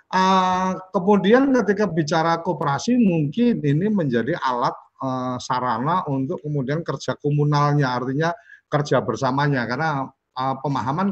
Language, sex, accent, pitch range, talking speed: Indonesian, male, native, 130-165 Hz, 115 wpm